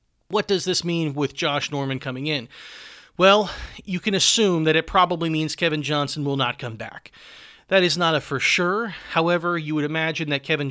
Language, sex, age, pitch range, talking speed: English, male, 30-49, 135-170 Hz, 195 wpm